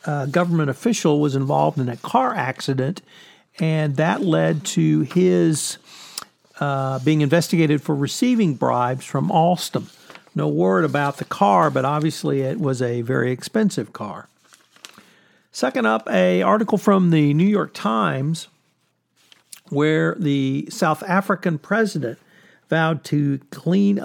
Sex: male